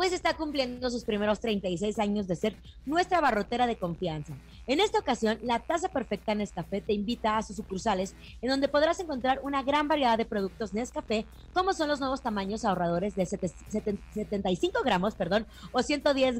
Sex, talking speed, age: female, 170 wpm, 30-49